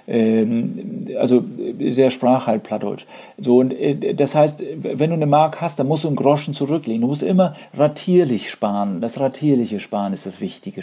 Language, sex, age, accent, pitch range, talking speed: German, male, 50-69, German, 125-165 Hz, 165 wpm